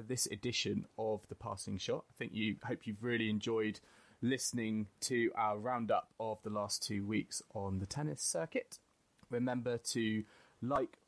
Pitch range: 105-130 Hz